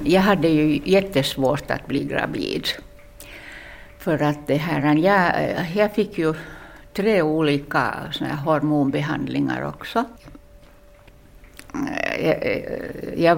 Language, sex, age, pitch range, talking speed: Swedish, female, 60-79, 135-175 Hz, 95 wpm